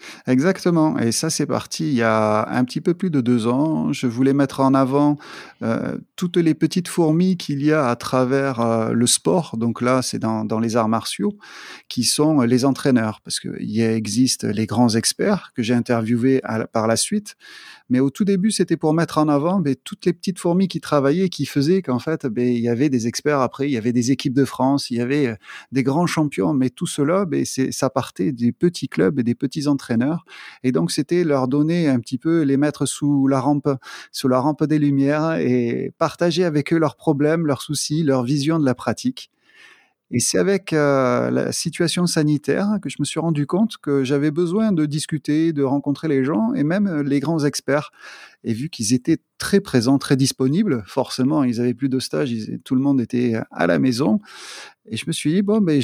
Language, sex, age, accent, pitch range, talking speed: French, male, 30-49, French, 125-160 Hz, 215 wpm